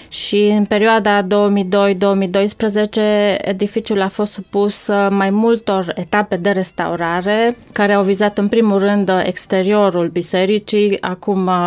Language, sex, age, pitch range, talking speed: Romanian, female, 20-39, 185-210 Hz, 115 wpm